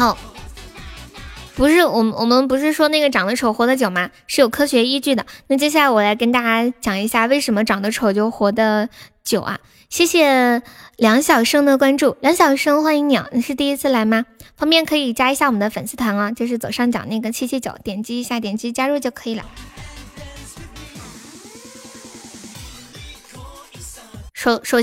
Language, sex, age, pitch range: Chinese, female, 20-39, 220-280 Hz